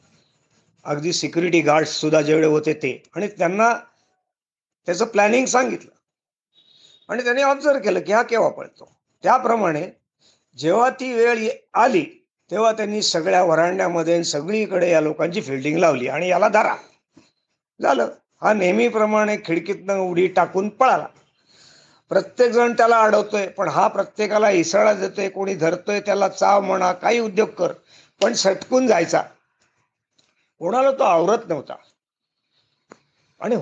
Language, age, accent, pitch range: Marathi, 50-69, native, 170-220 Hz